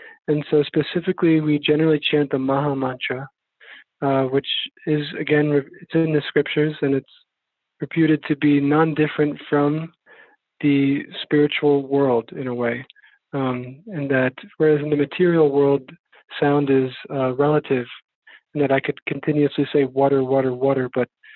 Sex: male